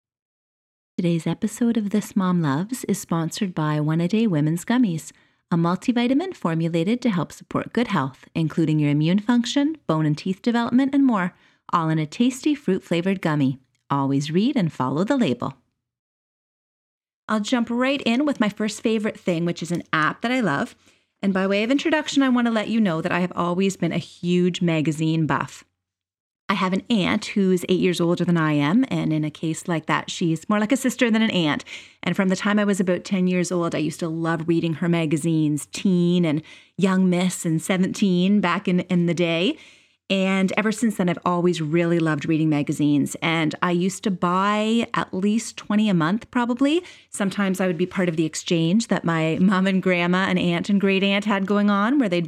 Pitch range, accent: 165-215 Hz, American